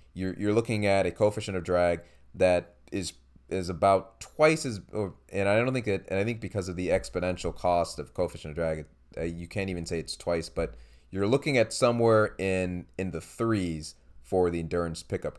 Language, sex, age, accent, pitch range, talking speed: English, male, 20-39, American, 85-105 Hz, 195 wpm